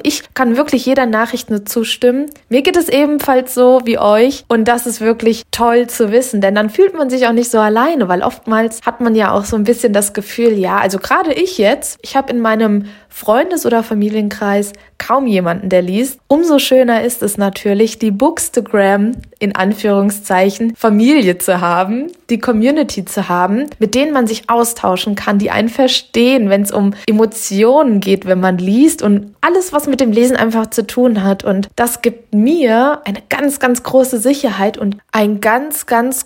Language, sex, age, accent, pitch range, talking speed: German, female, 20-39, German, 205-255 Hz, 185 wpm